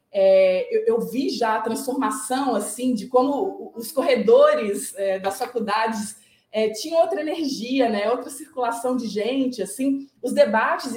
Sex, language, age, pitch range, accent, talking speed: female, Portuguese, 20-39, 210-275 Hz, Brazilian, 130 wpm